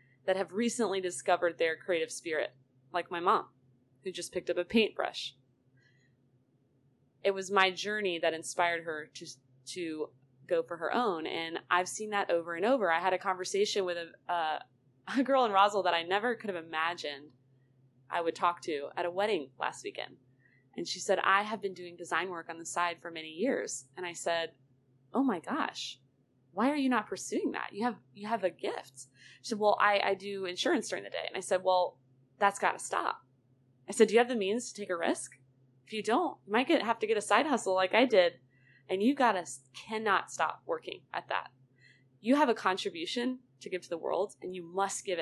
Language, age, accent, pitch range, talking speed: English, 20-39, American, 135-205 Hz, 215 wpm